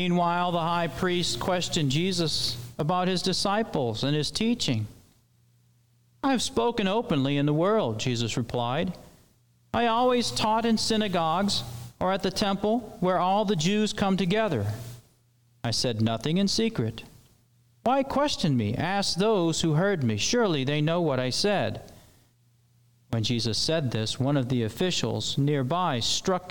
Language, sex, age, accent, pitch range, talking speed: English, male, 40-59, American, 120-180 Hz, 145 wpm